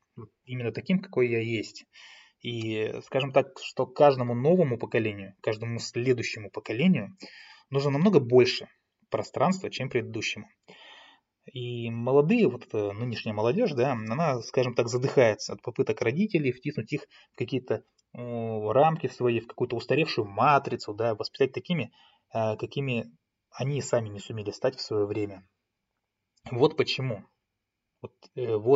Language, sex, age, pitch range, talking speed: Russian, male, 20-39, 110-145 Hz, 125 wpm